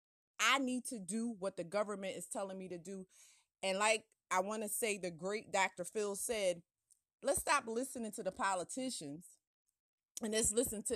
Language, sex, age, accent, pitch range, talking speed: English, female, 30-49, American, 205-305 Hz, 180 wpm